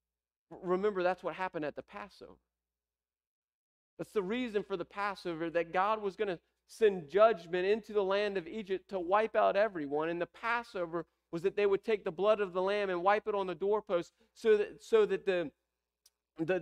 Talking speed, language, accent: 190 wpm, English, American